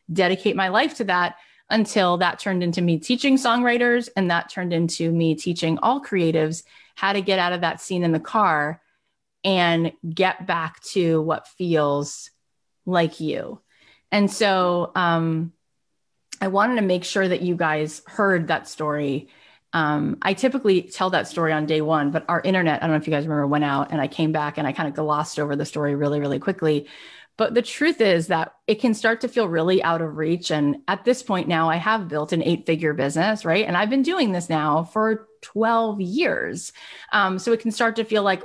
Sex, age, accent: female, 30-49, American